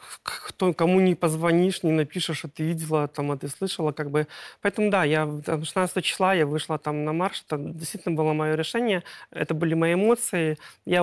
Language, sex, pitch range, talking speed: Russian, male, 155-185 Hz, 175 wpm